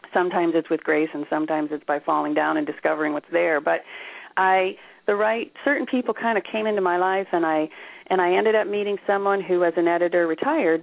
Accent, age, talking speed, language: American, 40-59, 215 wpm, English